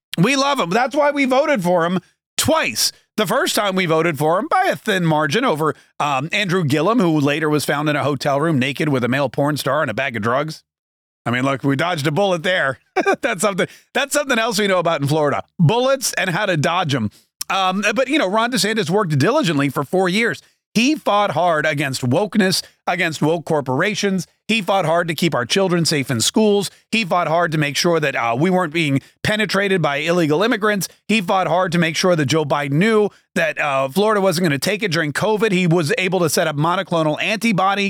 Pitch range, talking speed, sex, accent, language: 150-215 Hz, 220 wpm, male, American, English